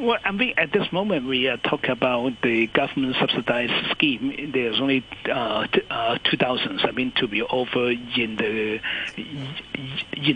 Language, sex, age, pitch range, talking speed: English, male, 60-79, 125-155 Hz, 175 wpm